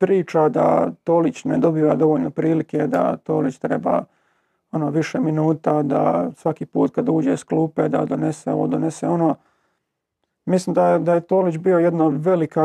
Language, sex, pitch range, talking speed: Croatian, male, 155-185 Hz, 160 wpm